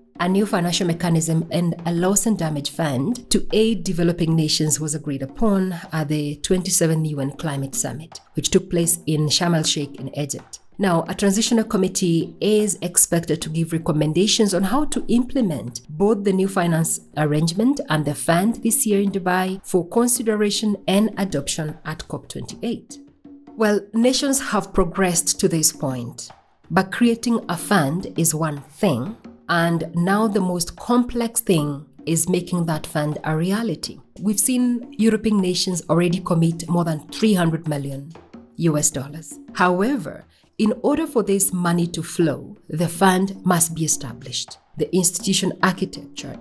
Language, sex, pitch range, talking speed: English, female, 155-205 Hz, 150 wpm